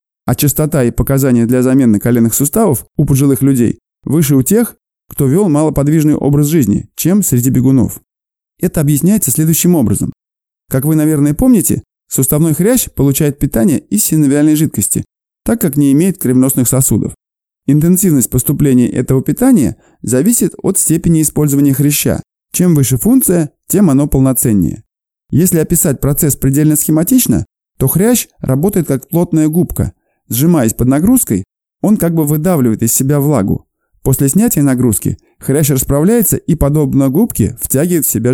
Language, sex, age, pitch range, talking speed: Russian, male, 20-39, 130-165 Hz, 140 wpm